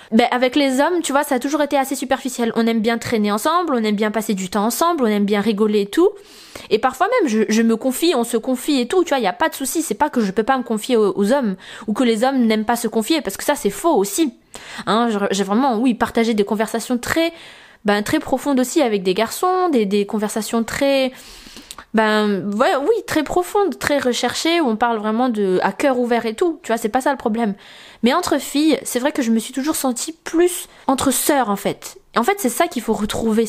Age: 20-39